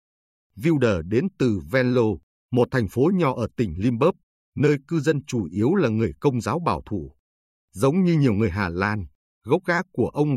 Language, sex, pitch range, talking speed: Vietnamese, male, 95-140 Hz, 185 wpm